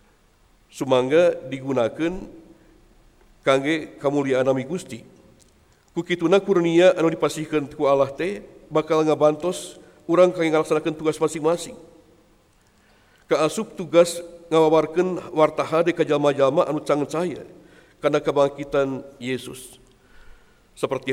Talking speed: 95 wpm